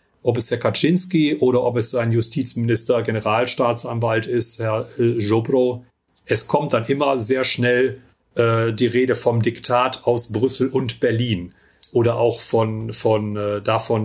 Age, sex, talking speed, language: 30-49, male, 145 wpm, German